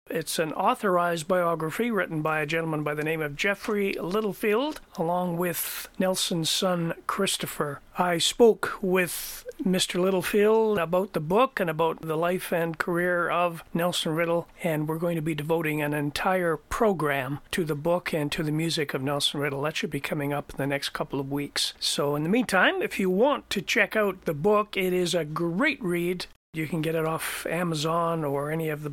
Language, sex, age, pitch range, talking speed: English, male, 40-59, 155-185 Hz, 195 wpm